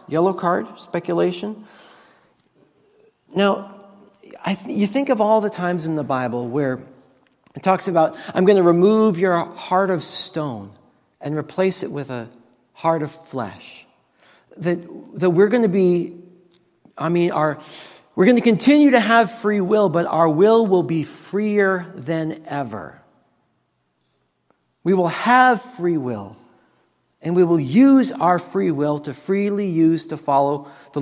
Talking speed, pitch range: 145 wpm, 160-200 Hz